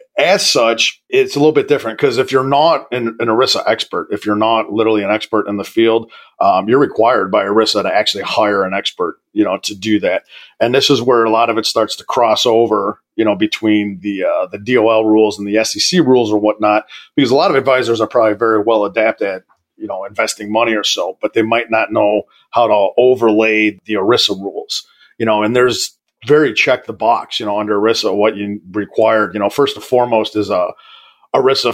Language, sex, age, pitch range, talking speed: English, male, 40-59, 105-130 Hz, 215 wpm